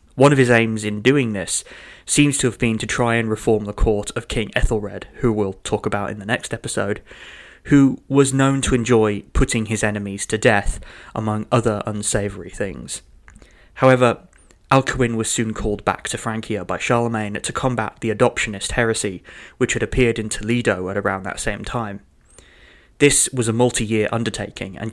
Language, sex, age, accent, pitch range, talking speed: English, male, 20-39, British, 105-125 Hz, 175 wpm